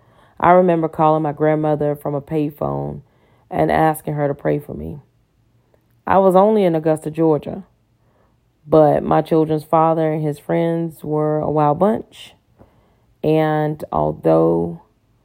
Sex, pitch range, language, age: female, 115-155 Hz, English, 30-49